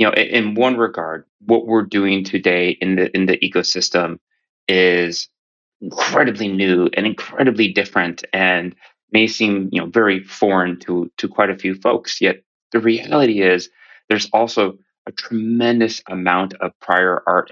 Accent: American